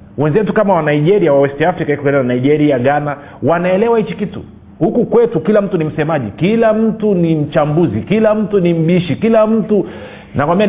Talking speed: 175 wpm